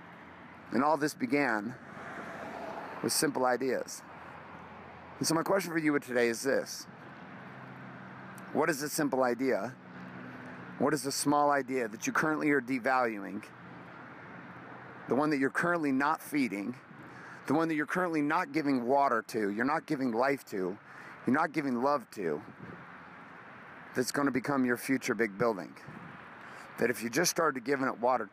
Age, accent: 40-59, American